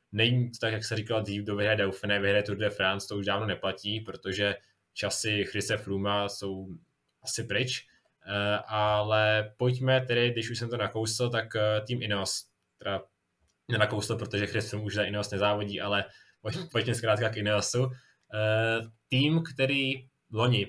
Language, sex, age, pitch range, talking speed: Czech, male, 20-39, 105-120 Hz, 150 wpm